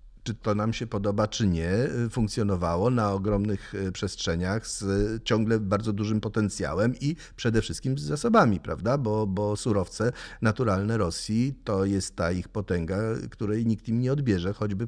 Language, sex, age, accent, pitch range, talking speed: Polish, male, 40-59, native, 90-115 Hz, 155 wpm